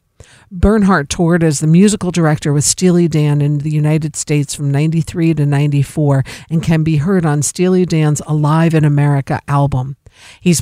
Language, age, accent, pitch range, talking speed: English, 50-69, American, 145-160 Hz, 165 wpm